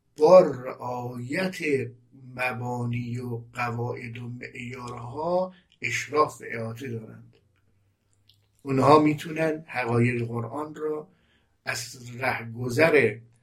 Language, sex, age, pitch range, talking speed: Persian, male, 60-79, 115-135 Hz, 70 wpm